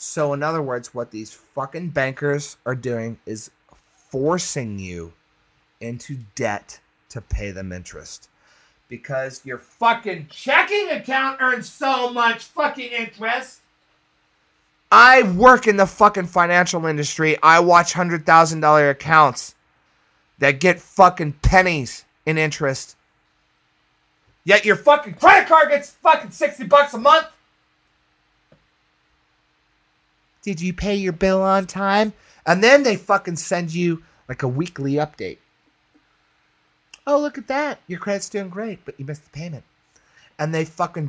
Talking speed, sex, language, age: 130 wpm, male, English, 30-49